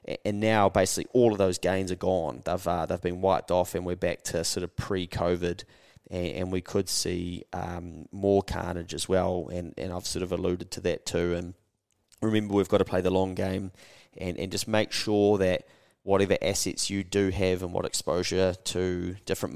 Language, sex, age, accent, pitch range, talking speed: English, male, 20-39, Australian, 90-100 Hz, 205 wpm